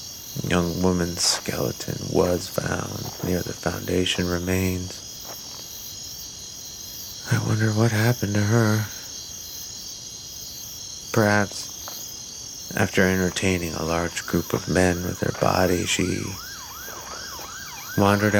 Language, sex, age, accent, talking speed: English, male, 30-49, American, 95 wpm